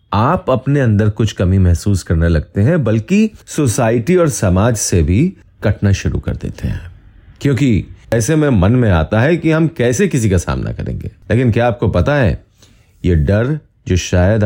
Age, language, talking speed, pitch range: 30-49, Hindi, 180 wpm, 95-145 Hz